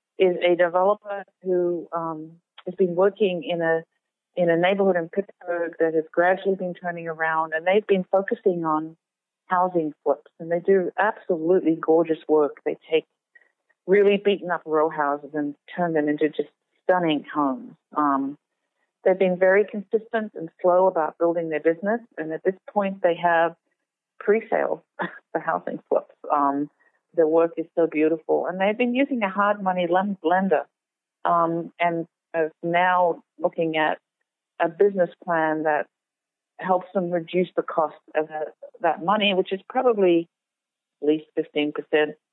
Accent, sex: American, female